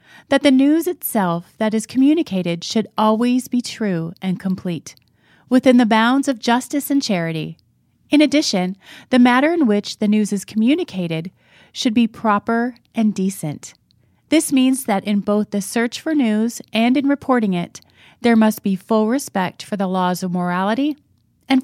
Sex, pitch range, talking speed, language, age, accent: female, 180-255 Hz, 165 wpm, English, 30-49, American